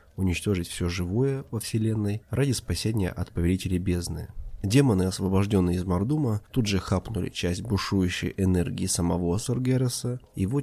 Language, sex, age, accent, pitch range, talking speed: Russian, male, 20-39, native, 90-110 Hz, 130 wpm